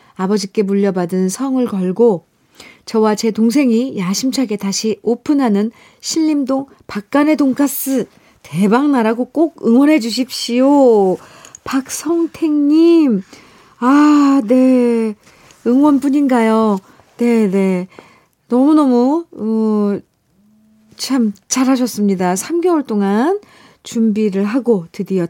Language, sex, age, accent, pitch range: Korean, female, 40-59, native, 185-260 Hz